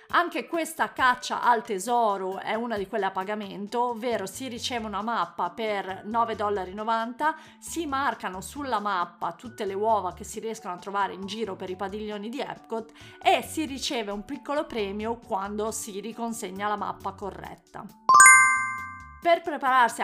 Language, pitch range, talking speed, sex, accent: Italian, 205-260 Hz, 155 wpm, female, native